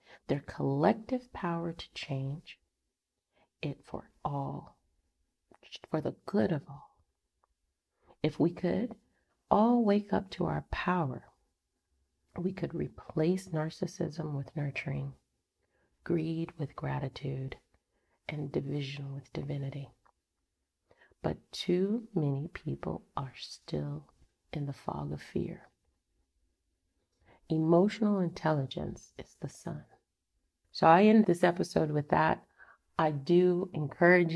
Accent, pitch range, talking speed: American, 135-170 Hz, 105 wpm